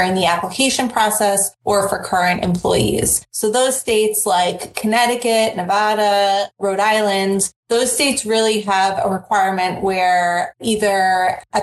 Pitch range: 185-215 Hz